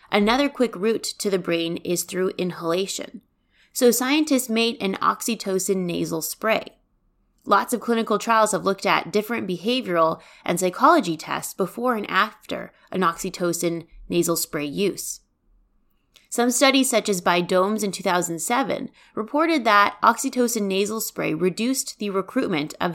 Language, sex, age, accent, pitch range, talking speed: English, female, 20-39, American, 175-225 Hz, 140 wpm